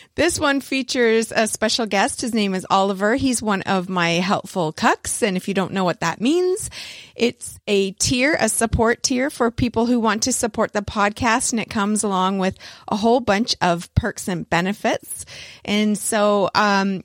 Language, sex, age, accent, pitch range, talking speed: English, female, 30-49, American, 195-240 Hz, 185 wpm